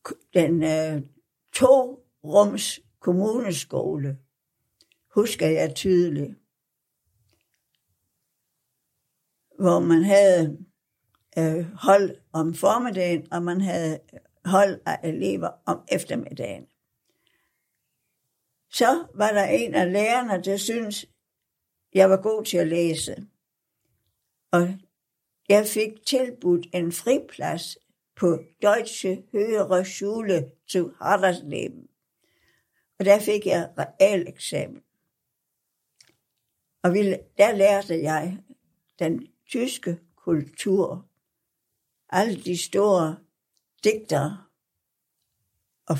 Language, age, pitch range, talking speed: Danish, 60-79, 165-205 Hz, 85 wpm